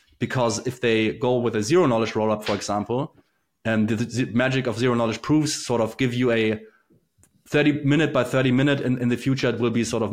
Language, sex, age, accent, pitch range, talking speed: English, male, 30-49, German, 110-130 Hz, 225 wpm